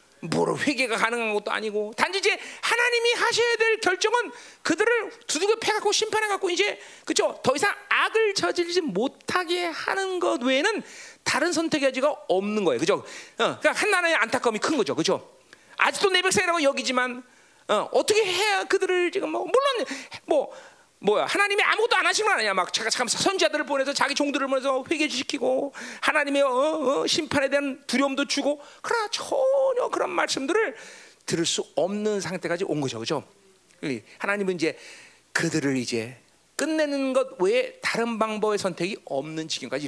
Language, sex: Korean, male